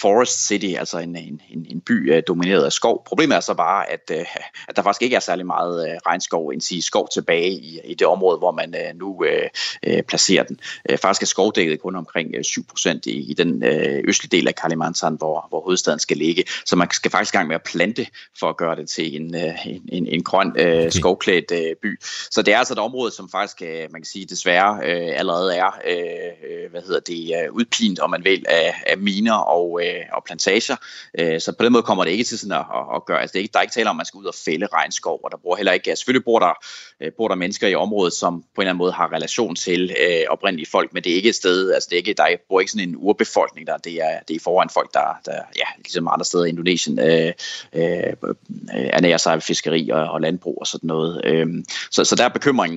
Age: 30-49